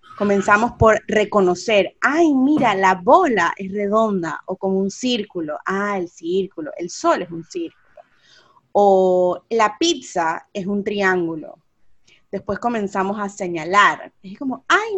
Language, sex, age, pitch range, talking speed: Spanish, female, 30-49, 185-240 Hz, 135 wpm